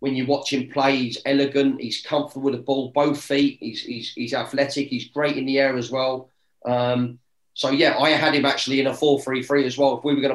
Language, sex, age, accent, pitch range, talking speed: English, male, 30-49, British, 130-145 Hz, 245 wpm